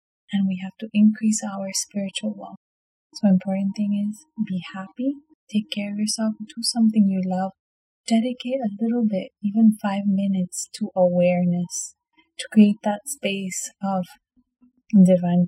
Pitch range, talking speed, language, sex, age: 185-215 Hz, 145 wpm, English, female, 20-39